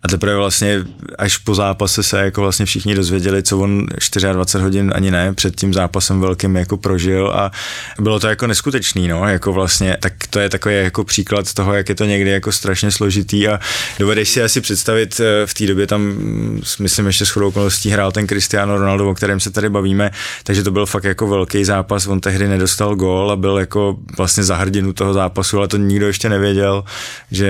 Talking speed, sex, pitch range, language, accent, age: 195 wpm, male, 95-105 Hz, Czech, native, 20-39